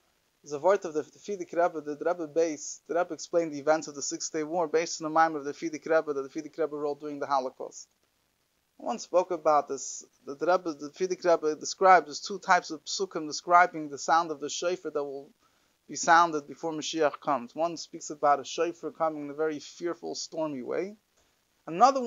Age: 30-49